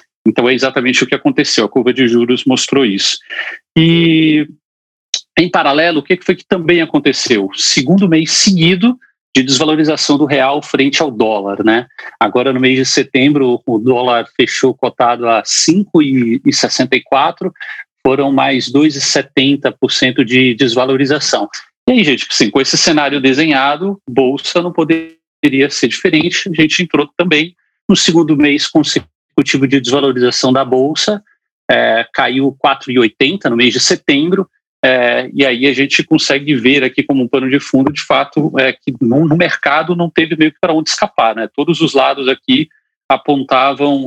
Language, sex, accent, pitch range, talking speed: Portuguese, male, Brazilian, 130-165 Hz, 155 wpm